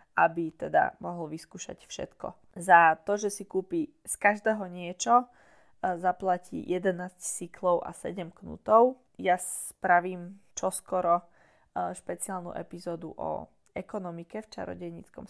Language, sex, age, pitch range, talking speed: Slovak, female, 20-39, 175-210 Hz, 110 wpm